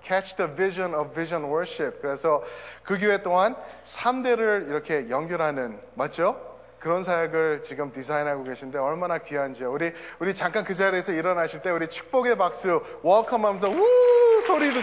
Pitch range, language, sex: 165-245 Hz, Korean, male